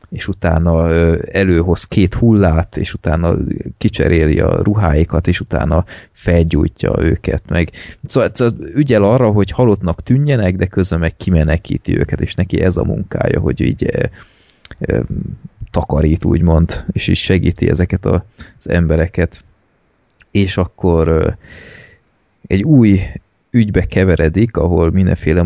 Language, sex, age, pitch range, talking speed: Hungarian, male, 30-49, 85-95 Hz, 120 wpm